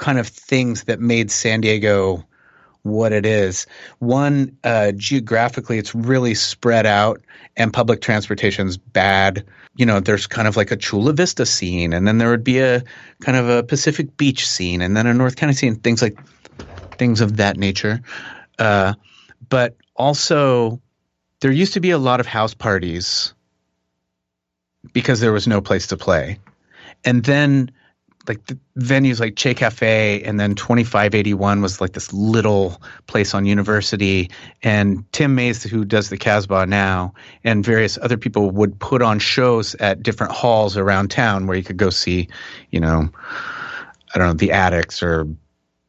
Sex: male